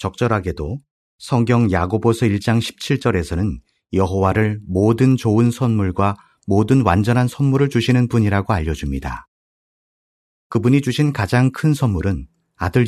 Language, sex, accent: Korean, male, native